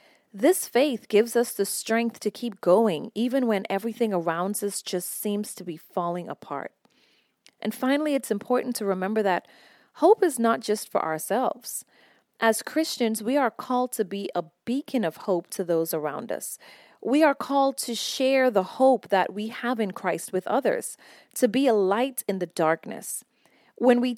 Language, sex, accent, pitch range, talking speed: English, female, American, 185-245 Hz, 175 wpm